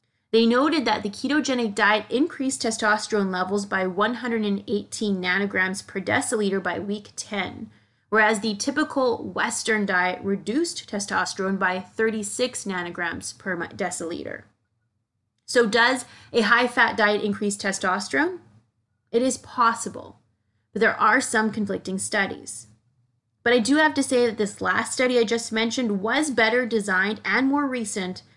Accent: American